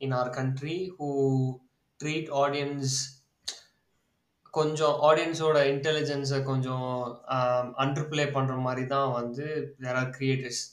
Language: Tamil